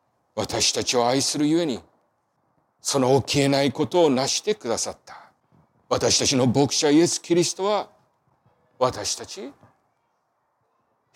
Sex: male